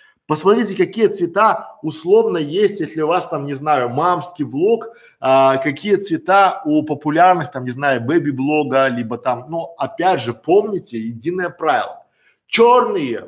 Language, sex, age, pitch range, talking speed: Russian, male, 20-39, 145-215 Hz, 150 wpm